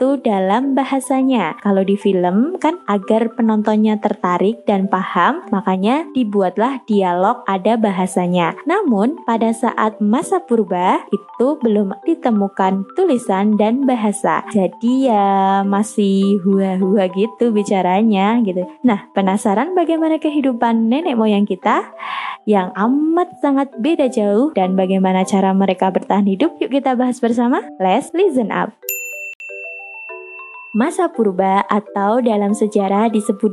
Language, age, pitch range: Indonesian, 20-39, 195-255 Hz